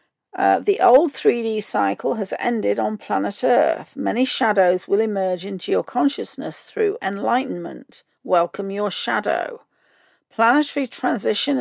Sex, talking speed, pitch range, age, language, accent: female, 125 wpm, 195-265 Hz, 50-69, English, British